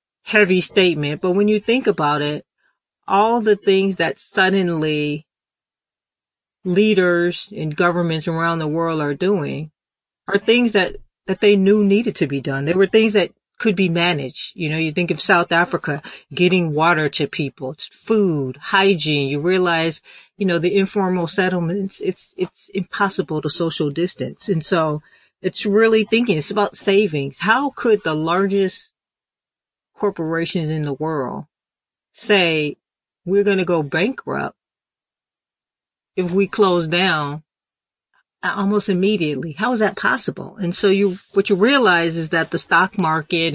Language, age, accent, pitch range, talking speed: English, 40-59, American, 160-200 Hz, 150 wpm